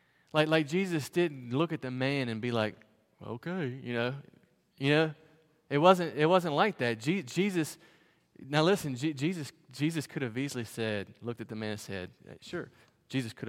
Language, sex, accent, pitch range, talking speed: English, male, American, 110-170 Hz, 185 wpm